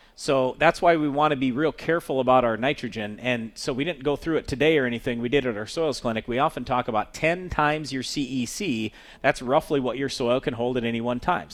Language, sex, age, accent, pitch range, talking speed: English, male, 40-59, American, 125-155 Hz, 250 wpm